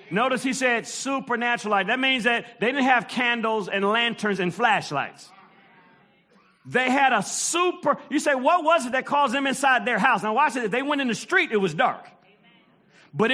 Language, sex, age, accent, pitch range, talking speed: English, male, 40-59, American, 240-315 Hz, 195 wpm